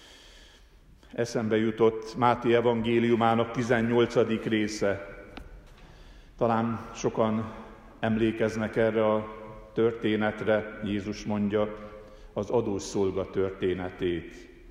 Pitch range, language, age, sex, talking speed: 105-125 Hz, Hungarian, 50-69, male, 70 wpm